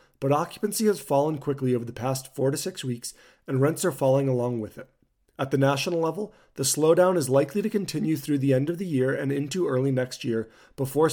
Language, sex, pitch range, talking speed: English, male, 130-155 Hz, 220 wpm